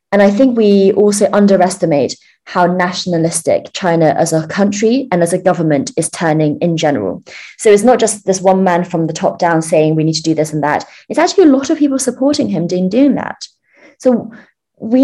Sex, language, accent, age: female, English, British, 20-39